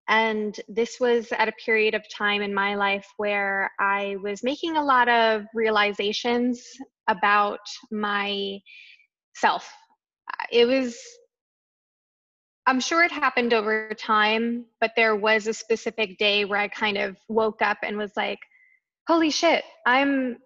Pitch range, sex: 205-250 Hz, female